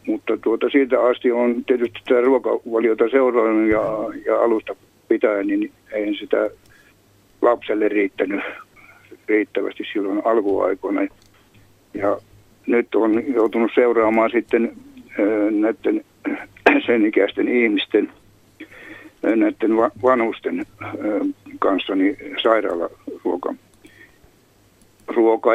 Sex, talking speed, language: male, 80 wpm, Finnish